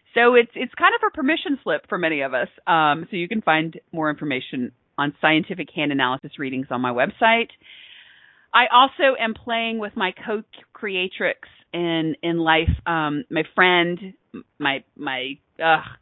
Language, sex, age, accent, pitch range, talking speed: English, female, 40-59, American, 160-230 Hz, 160 wpm